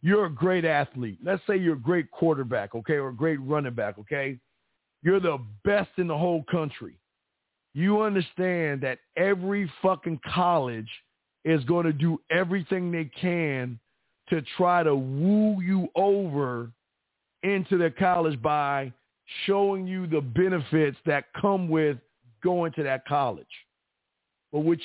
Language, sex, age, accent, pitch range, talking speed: English, male, 50-69, American, 130-170 Hz, 145 wpm